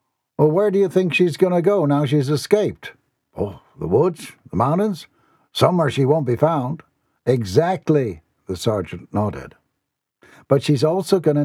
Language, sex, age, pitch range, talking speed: English, male, 60-79, 110-150 Hz, 160 wpm